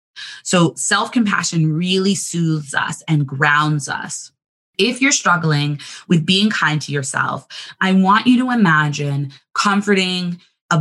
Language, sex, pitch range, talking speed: English, female, 160-210 Hz, 130 wpm